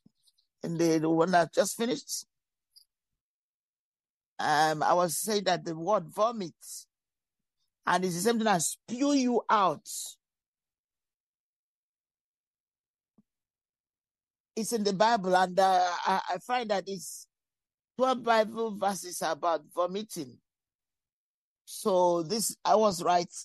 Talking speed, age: 115 wpm, 50-69